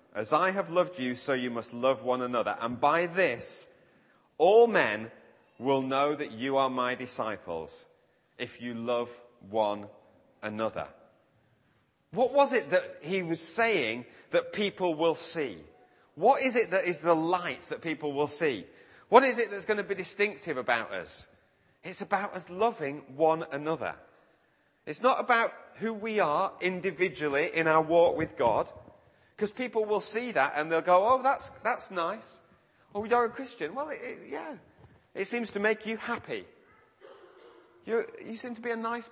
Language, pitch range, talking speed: English, 150-245 Hz, 165 wpm